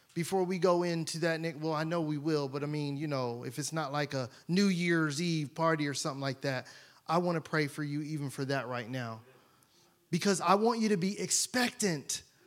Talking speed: 220 wpm